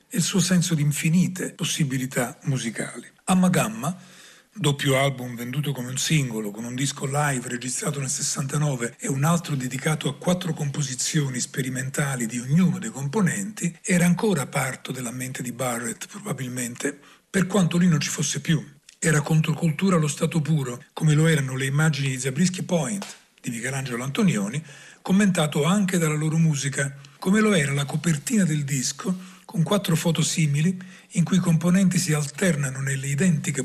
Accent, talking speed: native, 160 wpm